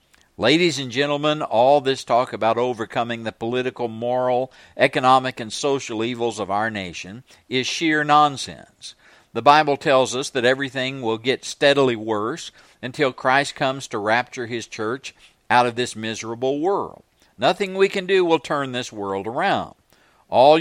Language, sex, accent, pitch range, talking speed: English, male, American, 115-145 Hz, 155 wpm